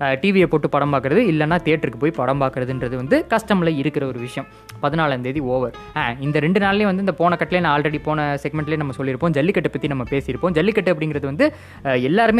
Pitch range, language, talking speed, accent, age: 135-175 Hz, Tamil, 185 wpm, native, 20-39